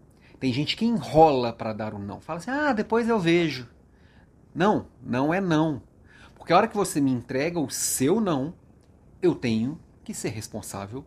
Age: 40-59